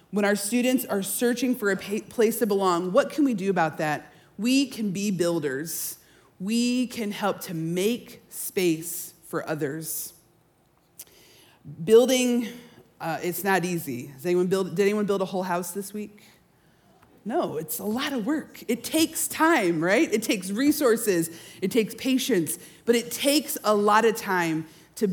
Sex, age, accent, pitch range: female, 30-49, American, 165-230 Hz